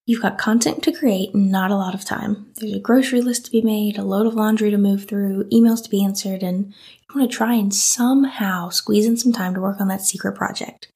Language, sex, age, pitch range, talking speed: English, female, 10-29, 195-240 Hz, 250 wpm